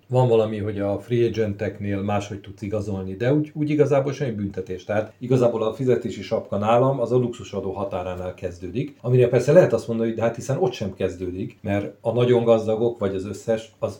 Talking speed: 195 wpm